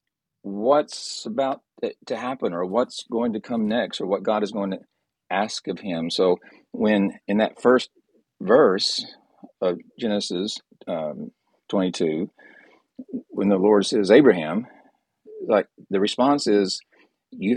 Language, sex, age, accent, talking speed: English, male, 40-59, American, 135 wpm